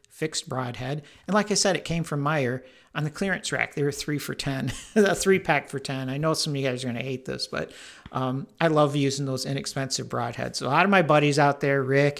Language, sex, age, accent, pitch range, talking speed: English, male, 50-69, American, 130-150 Hz, 255 wpm